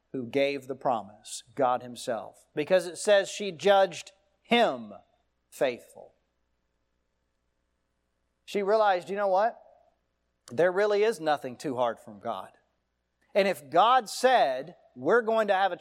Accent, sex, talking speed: American, male, 135 wpm